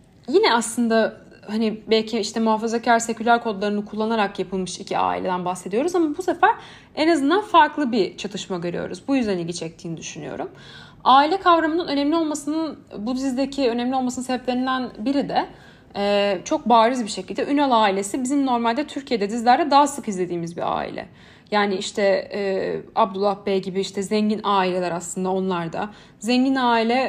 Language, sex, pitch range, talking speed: Turkish, female, 210-275 Hz, 150 wpm